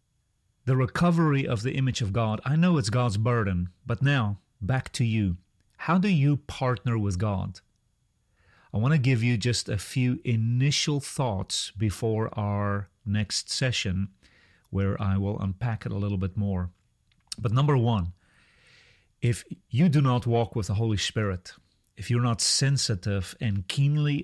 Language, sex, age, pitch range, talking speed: English, male, 40-59, 100-125 Hz, 160 wpm